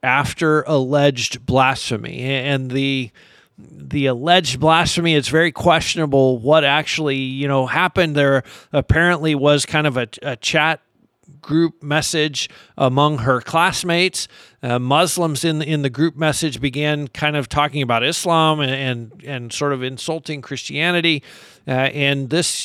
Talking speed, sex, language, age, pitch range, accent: 140 wpm, male, English, 50-69, 135-165 Hz, American